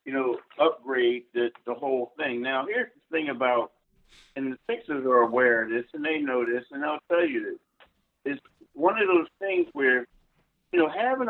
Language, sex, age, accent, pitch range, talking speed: English, male, 50-69, American, 140-190 Hz, 195 wpm